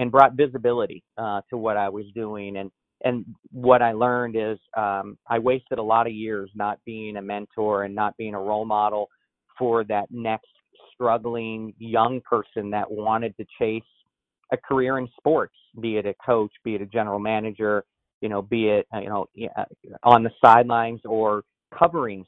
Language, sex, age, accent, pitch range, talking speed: English, male, 40-59, American, 105-115 Hz, 180 wpm